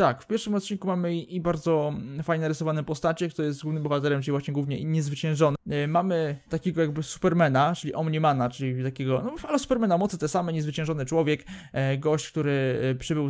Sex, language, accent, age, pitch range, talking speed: male, Polish, native, 20-39, 150-180 Hz, 165 wpm